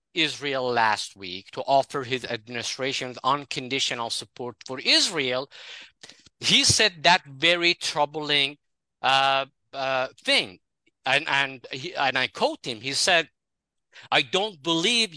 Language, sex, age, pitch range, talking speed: English, male, 50-69, 135-205 Hz, 120 wpm